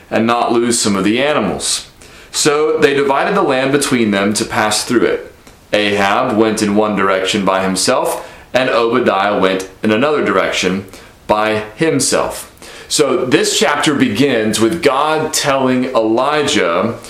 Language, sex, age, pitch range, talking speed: English, male, 30-49, 110-135 Hz, 145 wpm